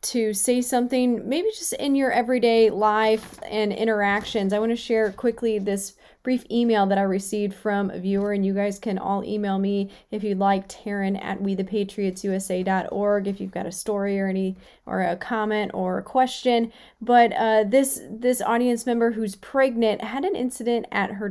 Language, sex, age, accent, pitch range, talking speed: English, female, 30-49, American, 200-245 Hz, 180 wpm